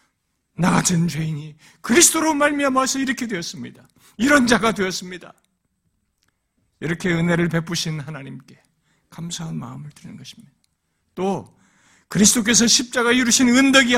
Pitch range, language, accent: 195-300 Hz, Korean, native